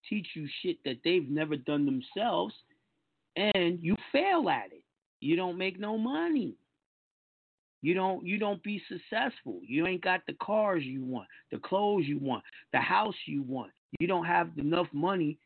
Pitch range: 125-190 Hz